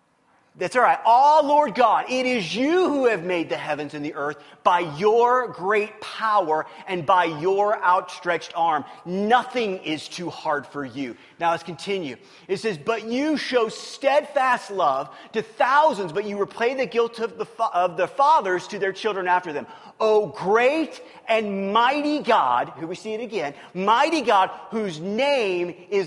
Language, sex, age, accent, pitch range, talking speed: English, male, 30-49, American, 185-245 Hz, 170 wpm